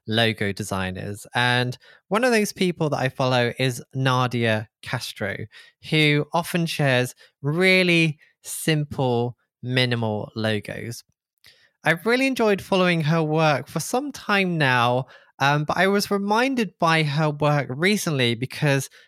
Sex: male